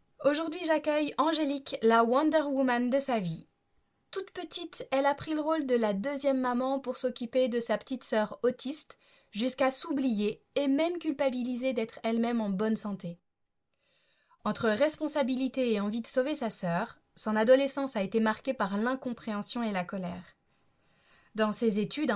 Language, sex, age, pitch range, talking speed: French, female, 20-39, 215-270 Hz, 155 wpm